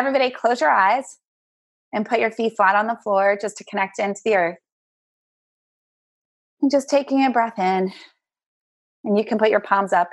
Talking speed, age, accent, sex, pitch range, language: 185 wpm, 30-49, American, female, 190-240 Hz, English